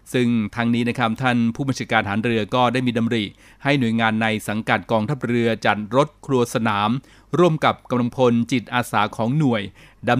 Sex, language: male, Thai